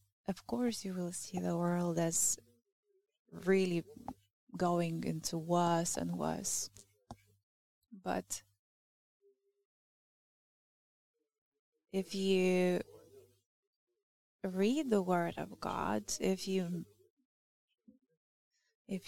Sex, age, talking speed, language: female, 20-39, 80 wpm, English